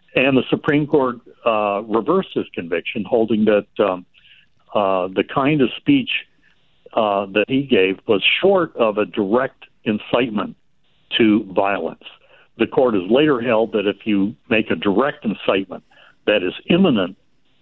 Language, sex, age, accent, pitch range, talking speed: English, male, 60-79, American, 100-140 Hz, 145 wpm